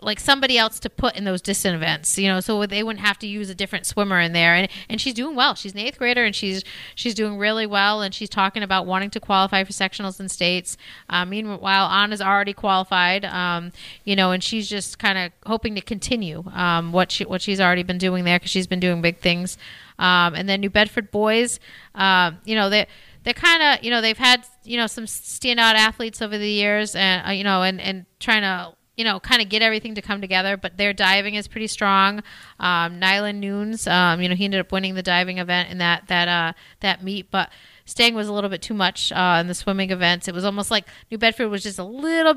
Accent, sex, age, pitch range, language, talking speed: American, female, 30-49, 185-225 Hz, English, 240 wpm